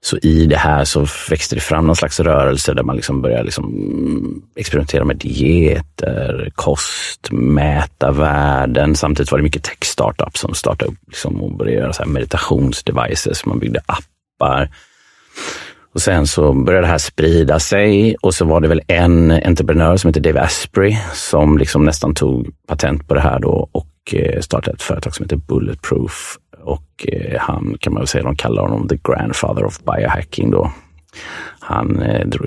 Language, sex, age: English, male, 30-49